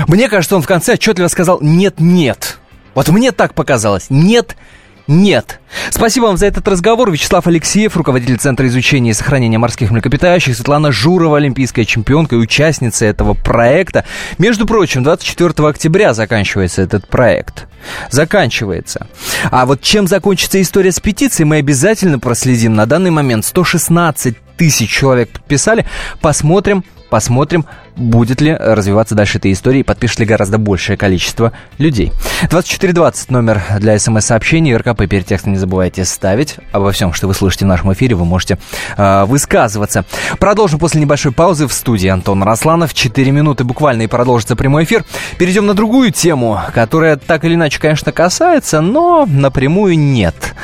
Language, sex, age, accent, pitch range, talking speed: Russian, male, 20-39, native, 110-170 Hz, 145 wpm